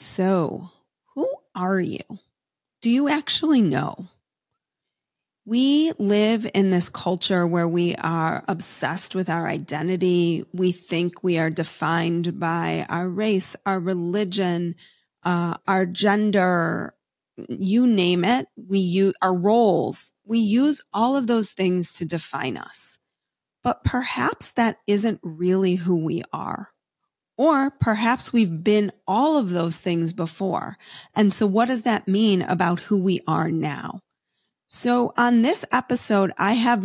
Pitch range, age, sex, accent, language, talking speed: 175-225 Hz, 30-49, female, American, English, 135 wpm